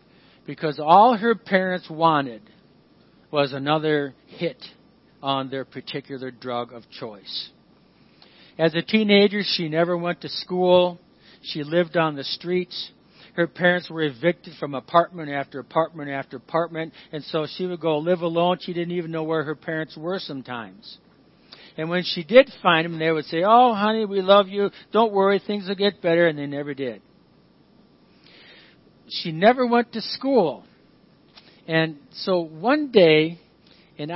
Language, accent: English, American